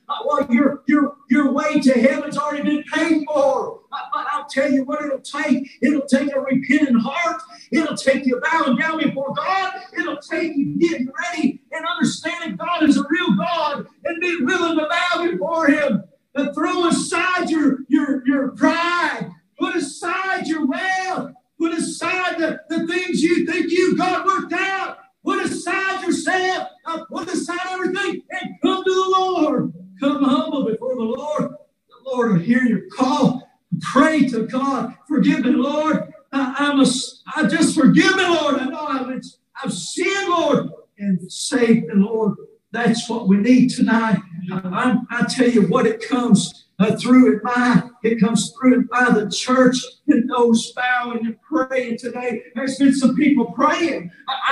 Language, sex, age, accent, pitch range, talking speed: English, male, 50-69, American, 250-325 Hz, 170 wpm